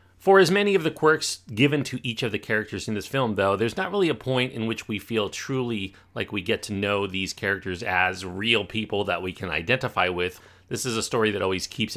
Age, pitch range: 30-49, 95-115 Hz